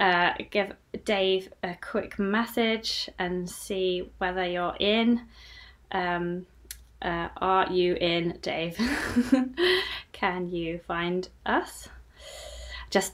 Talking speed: 95 wpm